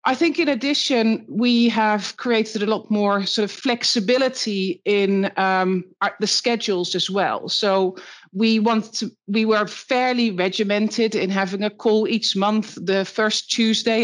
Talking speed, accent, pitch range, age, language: 155 wpm, Dutch, 190-225 Hz, 40-59, English